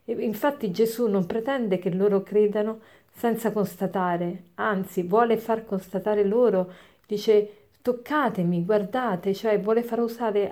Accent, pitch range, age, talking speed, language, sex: native, 190-230 Hz, 50-69, 120 wpm, Italian, female